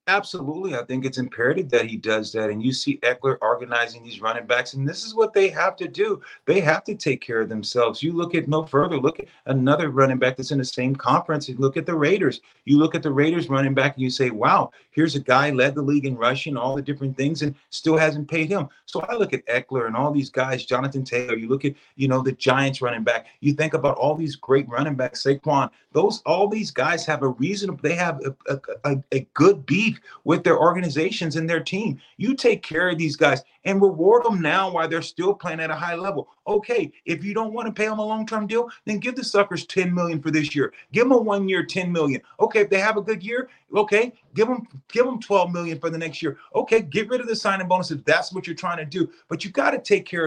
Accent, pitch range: American, 135-200 Hz